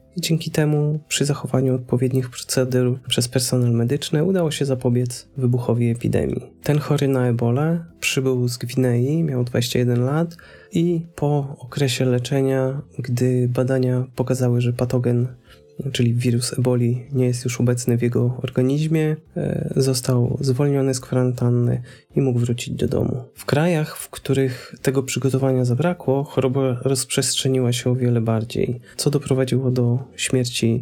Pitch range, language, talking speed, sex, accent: 120-140 Hz, Polish, 135 wpm, male, native